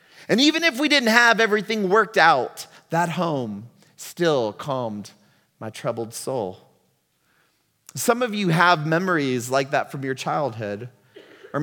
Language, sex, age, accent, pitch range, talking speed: English, male, 30-49, American, 130-195 Hz, 140 wpm